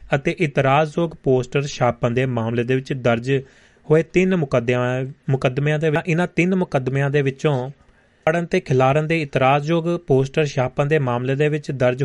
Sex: male